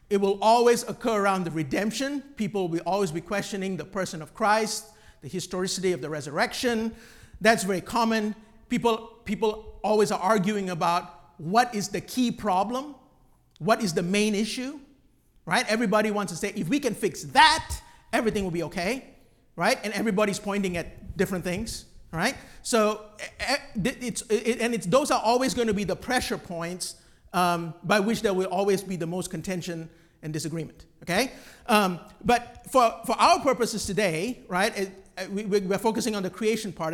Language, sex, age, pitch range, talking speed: English, male, 50-69, 180-225 Hz, 170 wpm